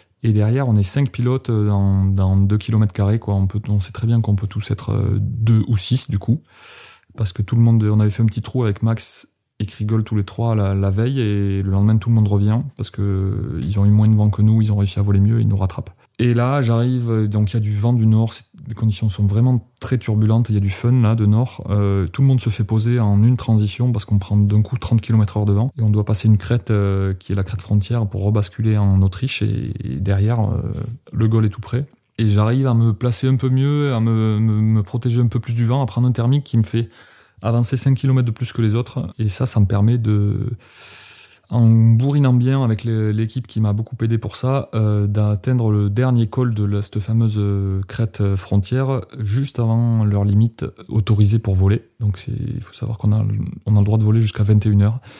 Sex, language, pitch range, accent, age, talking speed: male, French, 105-120 Hz, French, 20-39, 245 wpm